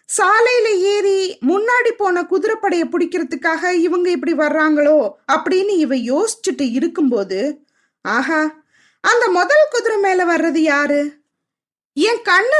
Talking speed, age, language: 105 wpm, 20-39, Tamil